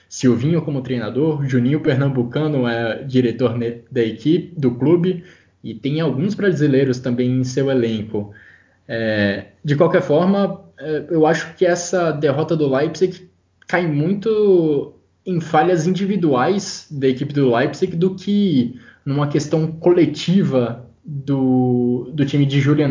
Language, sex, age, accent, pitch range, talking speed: Portuguese, male, 10-29, Brazilian, 125-160 Hz, 130 wpm